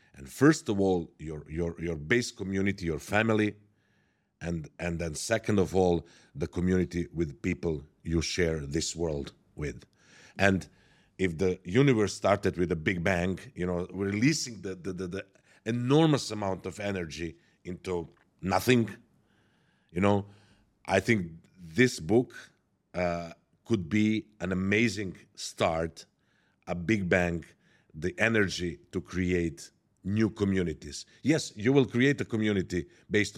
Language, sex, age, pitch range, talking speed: English, male, 50-69, 85-110 Hz, 135 wpm